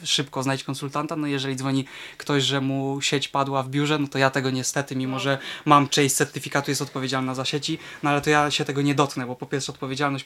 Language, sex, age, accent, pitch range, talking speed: Polish, male, 20-39, native, 135-150 Hz, 230 wpm